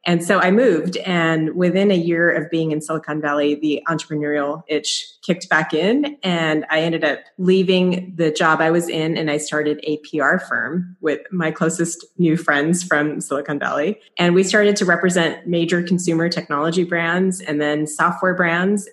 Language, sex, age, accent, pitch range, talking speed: English, female, 30-49, American, 150-180 Hz, 180 wpm